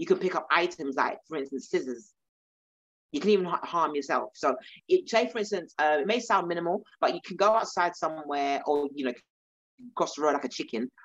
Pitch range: 135-180 Hz